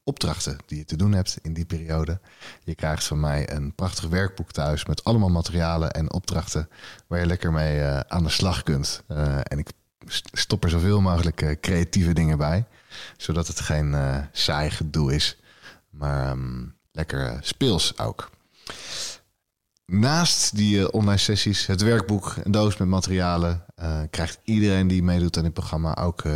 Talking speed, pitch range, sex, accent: 155 wpm, 75-90 Hz, male, Dutch